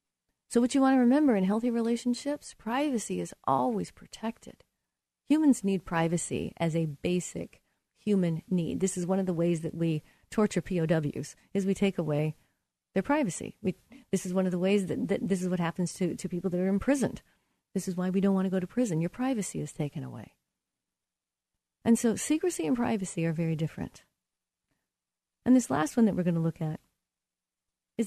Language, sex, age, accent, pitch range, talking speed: English, female, 40-59, American, 165-230 Hz, 190 wpm